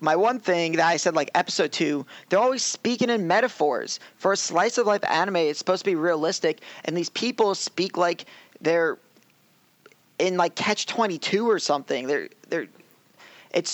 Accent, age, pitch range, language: American, 20-39, 145-200 Hz, English